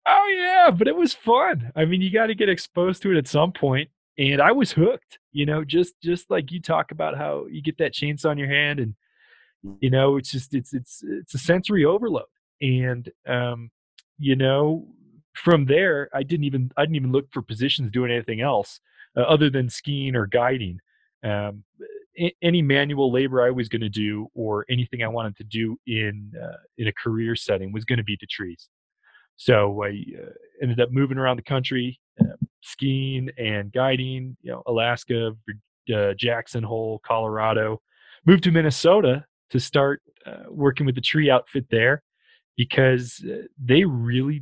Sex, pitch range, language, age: male, 120-155 Hz, English, 20-39